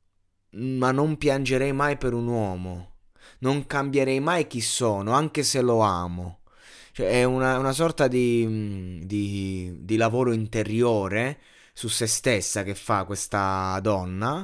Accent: native